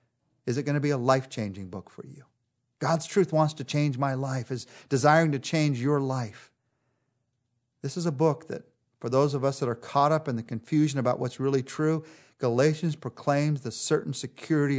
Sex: male